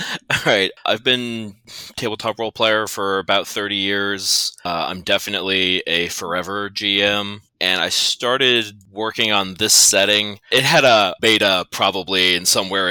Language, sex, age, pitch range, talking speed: English, male, 20-39, 90-110 Hz, 145 wpm